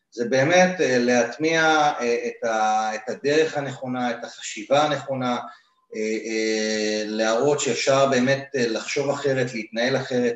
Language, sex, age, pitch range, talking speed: Hebrew, male, 30-49, 110-155 Hz, 95 wpm